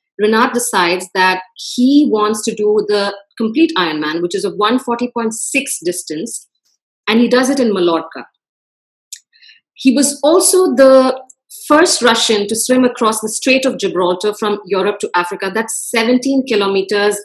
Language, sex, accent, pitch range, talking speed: English, female, Indian, 195-260 Hz, 145 wpm